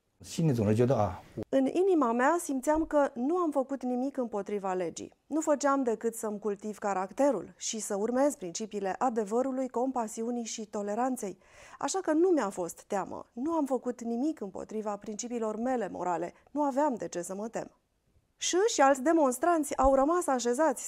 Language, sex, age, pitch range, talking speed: Romanian, female, 30-49, 210-280 Hz, 155 wpm